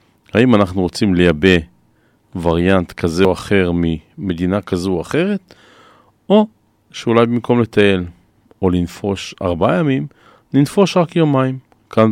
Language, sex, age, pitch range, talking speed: Hebrew, male, 40-59, 90-115 Hz, 120 wpm